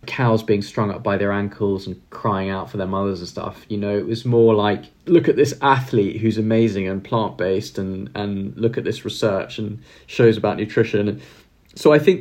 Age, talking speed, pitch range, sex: 20-39, 210 wpm, 105-125 Hz, male